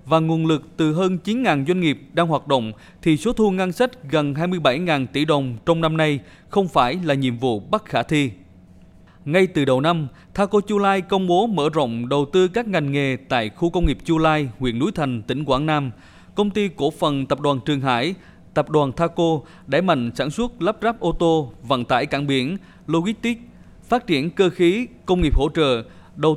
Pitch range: 140-180 Hz